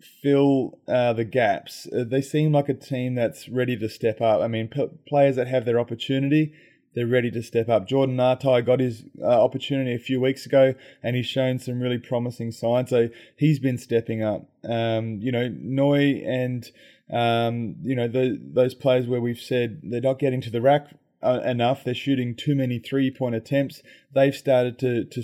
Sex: male